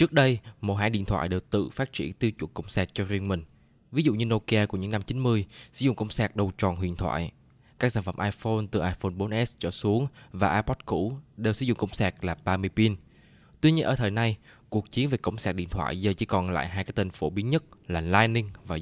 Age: 20-39